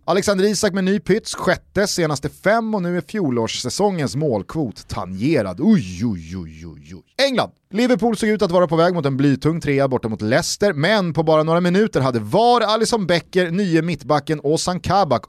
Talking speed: 180 wpm